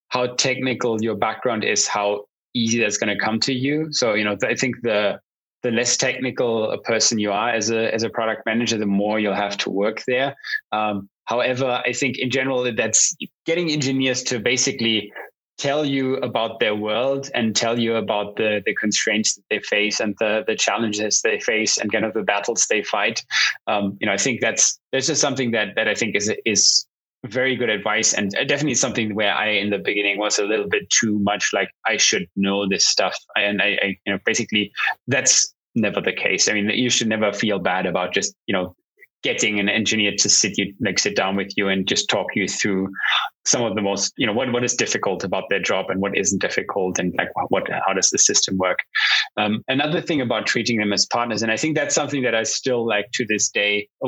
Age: 20-39